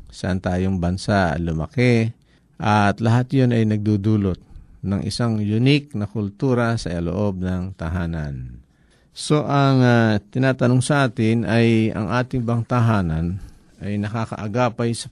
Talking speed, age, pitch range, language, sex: 125 wpm, 50-69, 90-120 Hz, Filipino, male